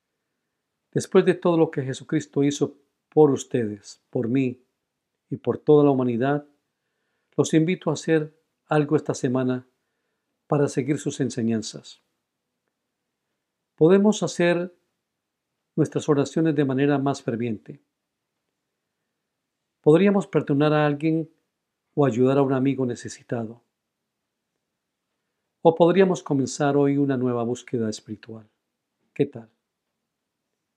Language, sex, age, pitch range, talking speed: Spanish, male, 50-69, 125-160 Hz, 105 wpm